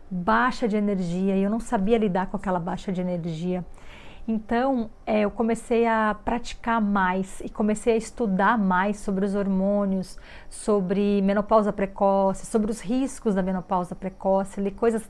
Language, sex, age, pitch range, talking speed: Portuguese, female, 40-59, 195-225 Hz, 155 wpm